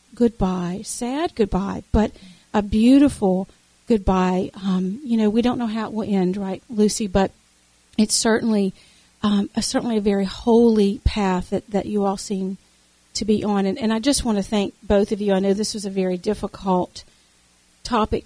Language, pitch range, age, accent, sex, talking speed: English, 195-225 Hz, 50-69, American, female, 175 wpm